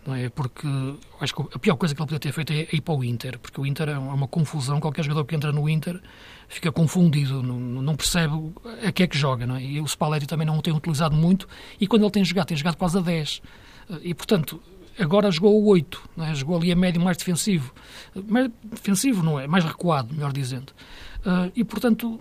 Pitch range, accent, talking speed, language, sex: 150-180 Hz, Portuguese, 225 wpm, Portuguese, male